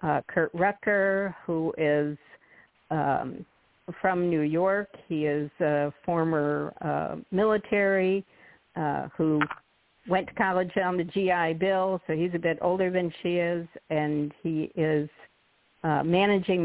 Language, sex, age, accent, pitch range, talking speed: English, female, 50-69, American, 150-190 Hz, 135 wpm